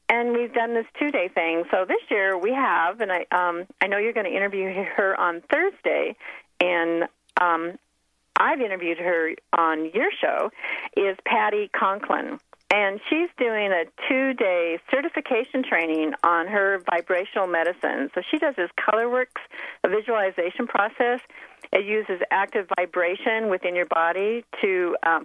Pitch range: 175-235 Hz